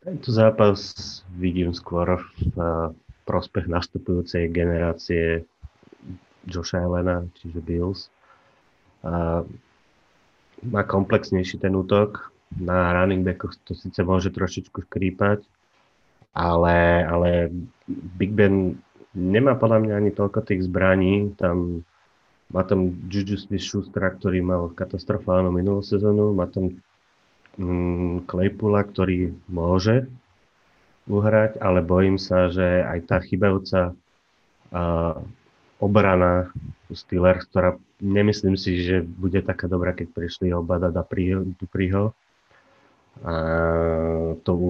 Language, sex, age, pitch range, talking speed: Slovak, male, 30-49, 85-100 Hz, 105 wpm